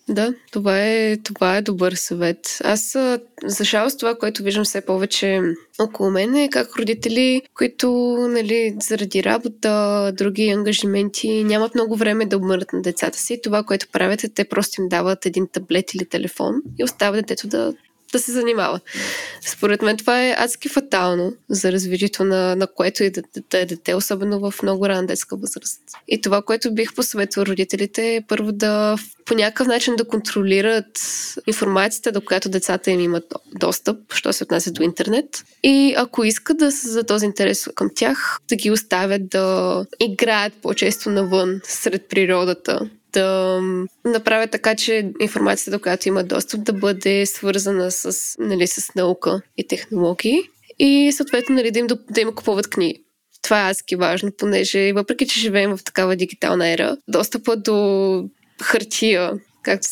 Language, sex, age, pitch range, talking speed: Bulgarian, female, 20-39, 190-230 Hz, 160 wpm